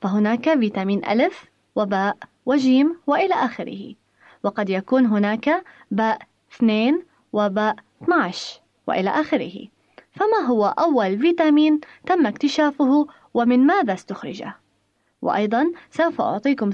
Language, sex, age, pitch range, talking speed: Arabic, female, 20-39, 215-300 Hz, 100 wpm